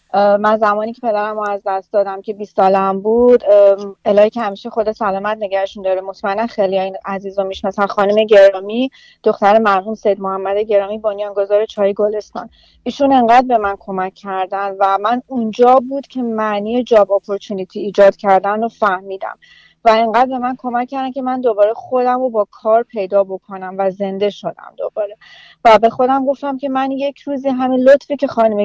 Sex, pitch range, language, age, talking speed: female, 200-245 Hz, Persian, 30-49, 170 wpm